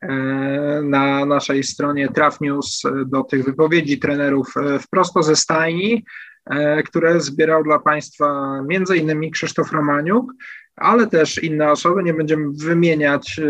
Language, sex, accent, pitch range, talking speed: Polish, male, native, 135-165 Hz, 110 wpm